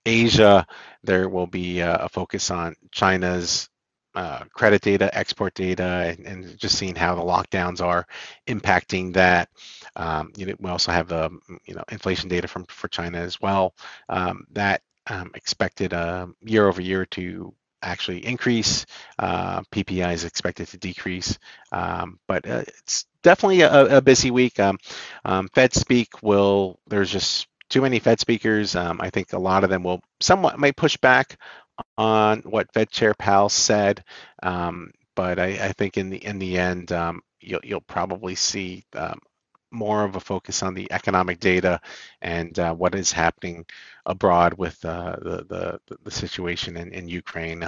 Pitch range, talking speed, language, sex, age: 90-105 Hz, 170 wpm, English, male, 40-59